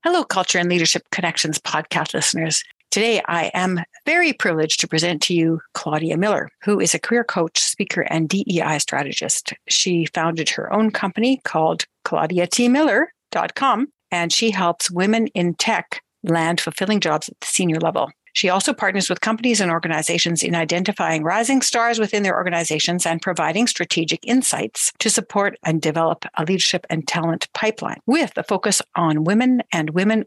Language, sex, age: English, female, 60-79